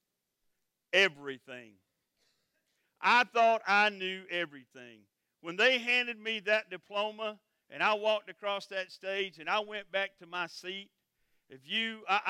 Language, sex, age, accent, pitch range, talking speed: English, male, 50-69, American, 165-205 Hz, 135 wpm